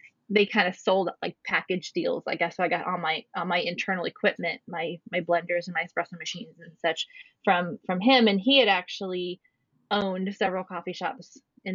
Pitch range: 185-225 Hz